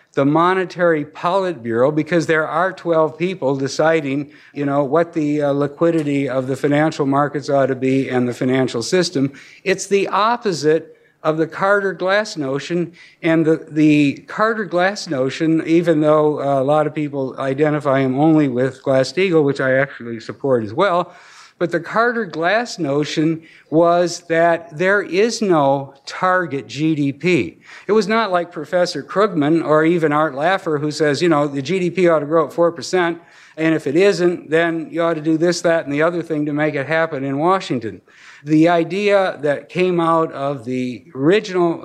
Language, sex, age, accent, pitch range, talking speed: English, male, 60-79, American, 145-175 Hz, 170 wpm